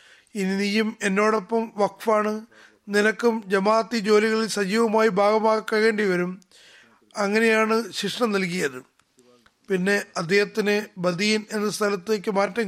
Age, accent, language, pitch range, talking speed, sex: 20-39, native, Malayalam, 180-215 Hz, 90 wpm, male